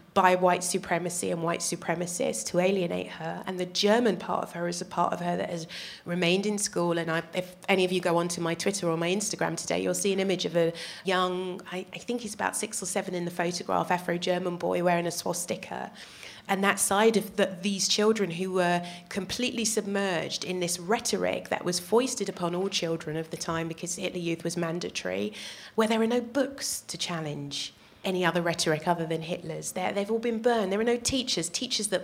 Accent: British